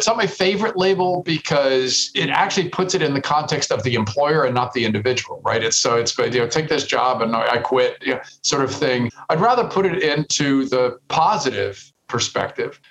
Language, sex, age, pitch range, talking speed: English, male, 50-69, 130-190 Hz, 210 wpm